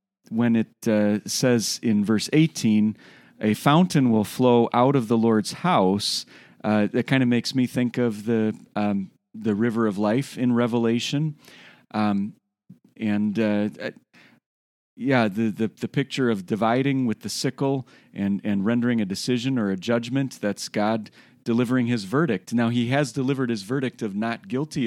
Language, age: English, 40-59